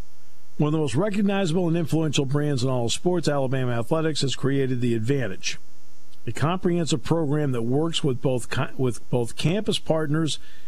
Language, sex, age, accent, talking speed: English, male, 50-69, American, 165 wpm